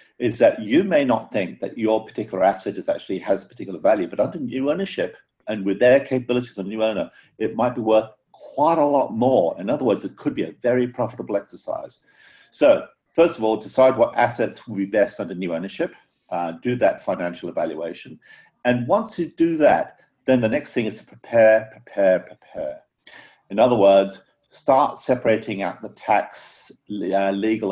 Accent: British